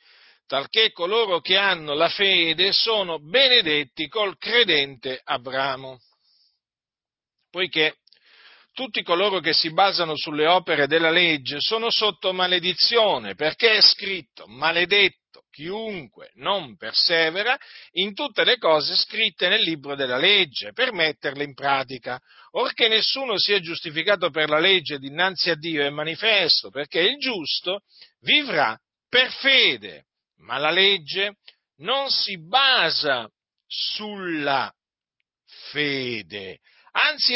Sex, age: male, 50-69